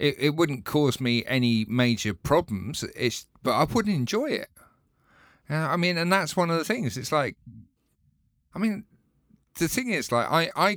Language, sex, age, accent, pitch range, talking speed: English, male, 50-69, British, 105-145 Hz, 185 wpm